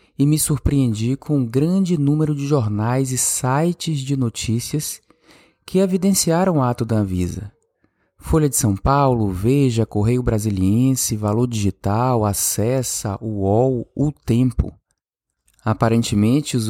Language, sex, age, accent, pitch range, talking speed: Portuguese, male, 20-39, Brazilian, 105-130 Hz, 120 wpm